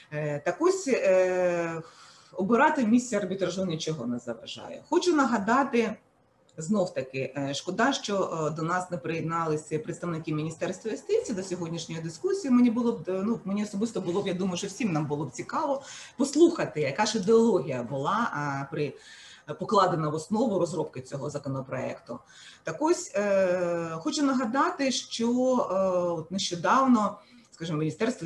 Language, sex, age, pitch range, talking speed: Ukrainian, female, 30-49, 150-230 Hz, 125 wpm